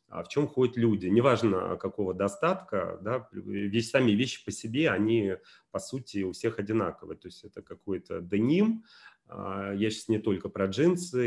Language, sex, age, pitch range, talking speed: Russian, male, 30-49, 100-120 Hz, 165 wpm